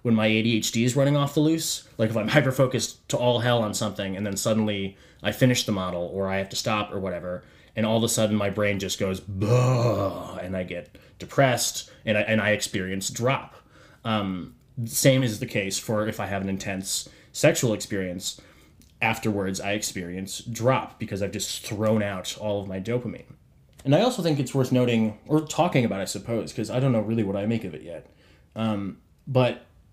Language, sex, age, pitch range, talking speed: English, male, 20-39, 100-125 Hz, 205 wpm